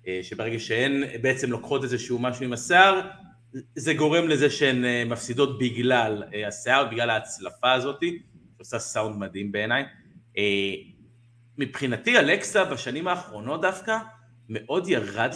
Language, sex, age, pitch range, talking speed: Hebrew, male, 30-49, 105-130 Hz, 115 wpm